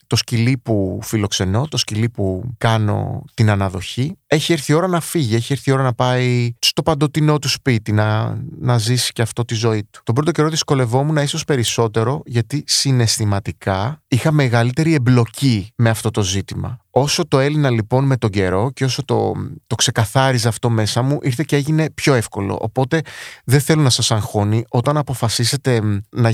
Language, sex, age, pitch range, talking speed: Greek, male, 30-49, 110-140 Hz, 180 wpm